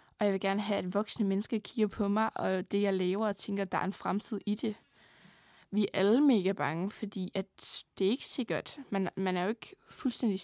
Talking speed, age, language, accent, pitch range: 230 wpm, 20-39, Danish, native, 190-220 Hz